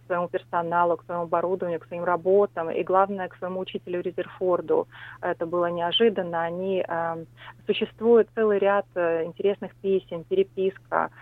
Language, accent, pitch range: Russian, native, 170-195 Hz